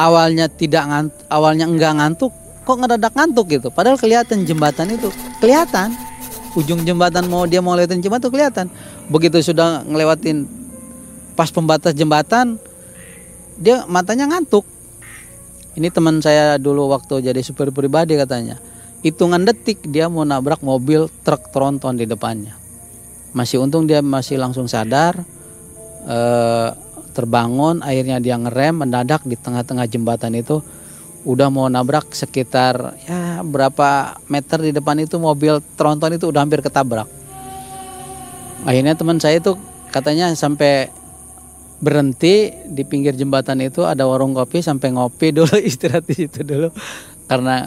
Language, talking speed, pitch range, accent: Indonesian, 130 wpm, 125-170 Hz, native